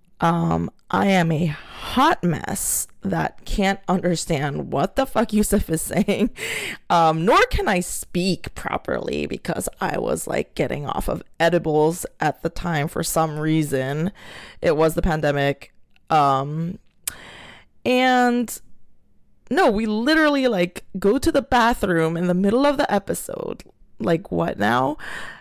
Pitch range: 165-225 Hz